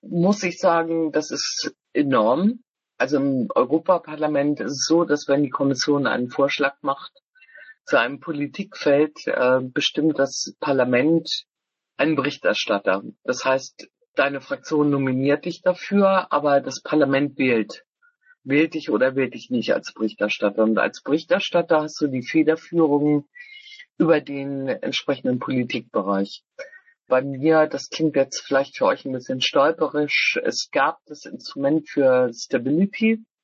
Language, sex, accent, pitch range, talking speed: German, female, German, 135-185 Hz, 135 wpm